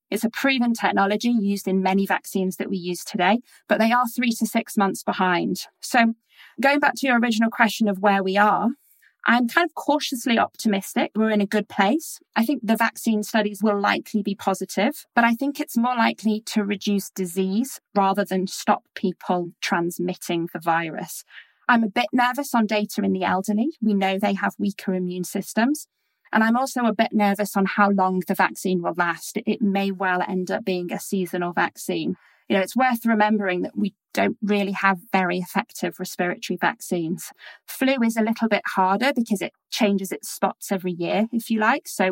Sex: female